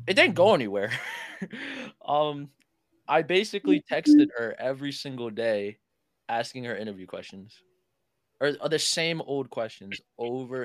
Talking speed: 130 wpm